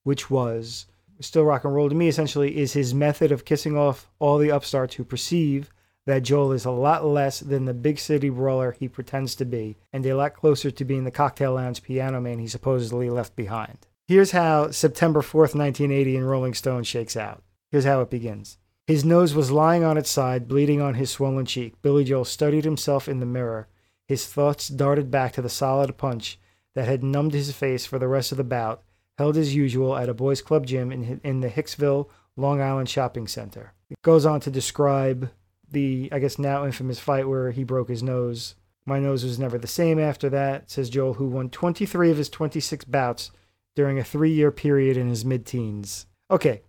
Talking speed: 205 wpm